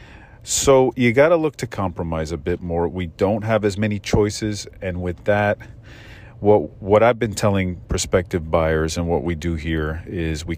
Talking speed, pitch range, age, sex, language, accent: 185 wpm, 85-110 Hz, 40-59, male, English, American